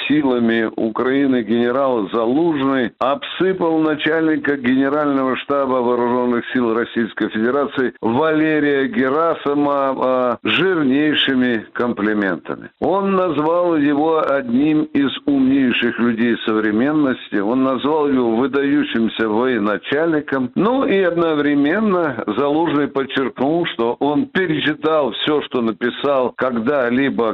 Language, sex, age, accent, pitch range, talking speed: Russian, male, 60-79, native, 130-175 Hz, 90 wpm